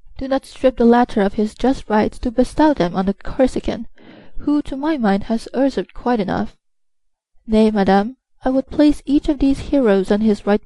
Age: 20-39